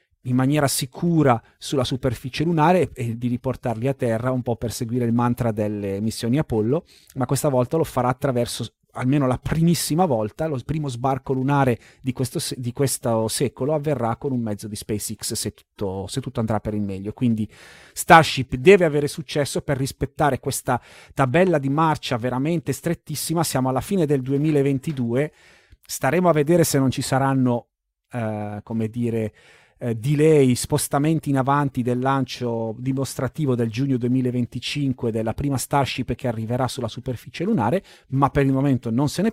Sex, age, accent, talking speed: male, 30-49, native, 160 wpm